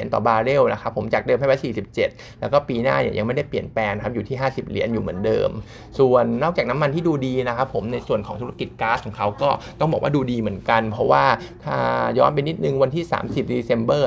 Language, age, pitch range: Thai, 20-39, 110-135 Hz